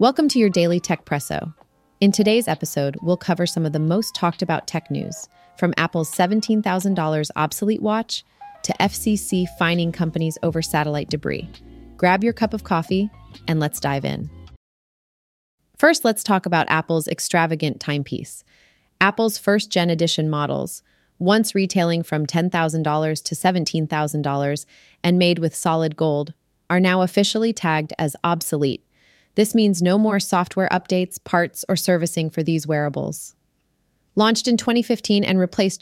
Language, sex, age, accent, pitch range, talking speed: English, female, 30-49, American, 160-200 Hz, 140 wpm